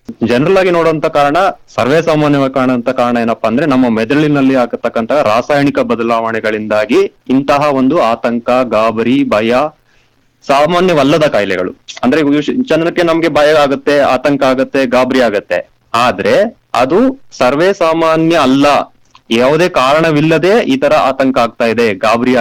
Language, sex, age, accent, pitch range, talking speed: English, male, 30-49, Indian, 115-145 Hz, 105 wpm